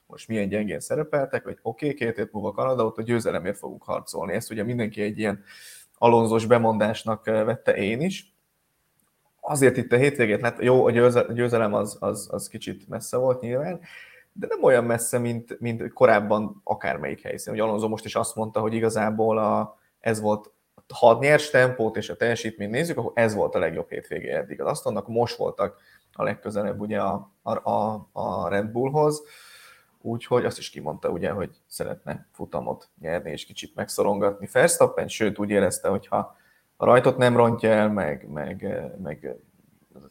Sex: male